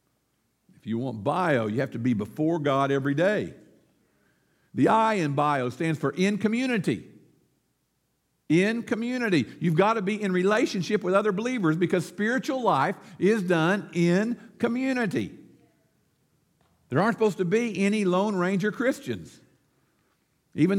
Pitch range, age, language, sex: 170-225 Hz, 50-69, English, male